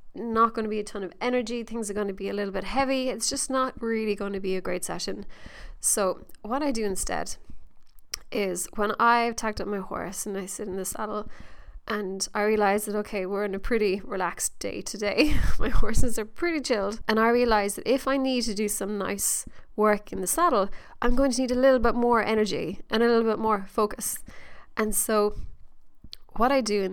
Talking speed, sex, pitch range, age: 220 wpm, female, 205-240 Hz, 20-39